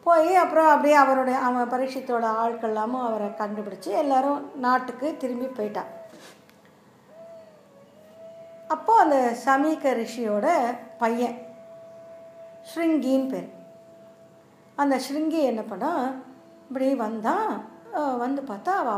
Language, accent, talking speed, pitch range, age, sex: Tamil, native, 90 wpm, 220-305 Hz, 50-69, female